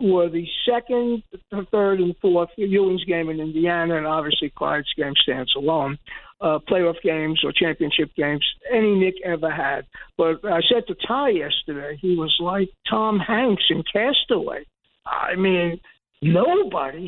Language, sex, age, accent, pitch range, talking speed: English, male, 60-79, American, 175-230 Hz, 150 wpm